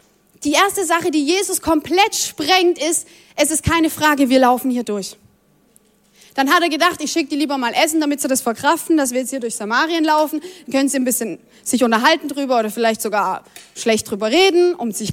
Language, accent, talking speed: German, German, 210 wpm